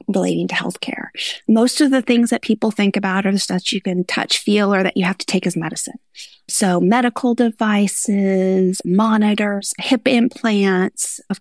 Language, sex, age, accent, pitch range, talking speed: English, female, 30-49, American, 190-260 Hz, 175 wpm